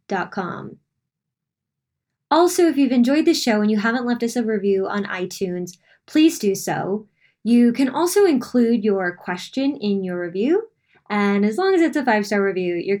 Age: 10-29